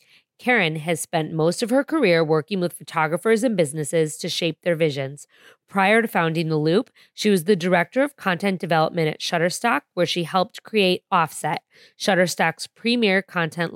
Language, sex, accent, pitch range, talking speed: English, female, American, 160-200 Hz, 165 wpm